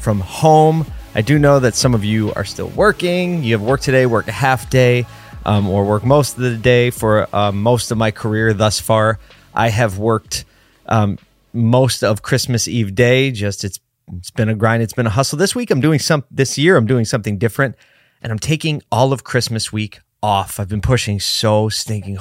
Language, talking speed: English, 210 wpm